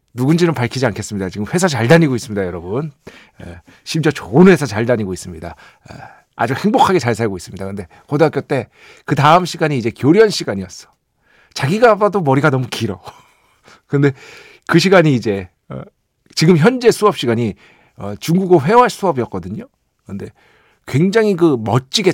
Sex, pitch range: male, 120-185 Hz